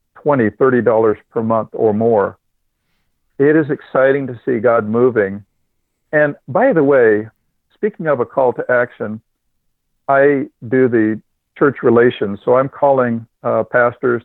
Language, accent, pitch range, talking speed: English, American, 110-130 Hz, 140 wpm